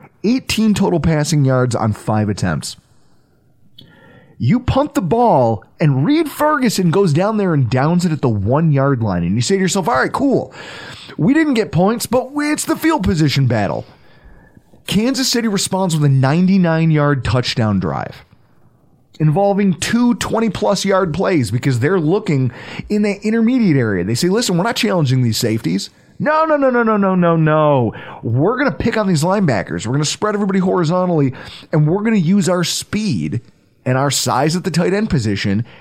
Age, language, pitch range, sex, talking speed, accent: 30-49, English, 135-200 Hz, male, 185 wpm, American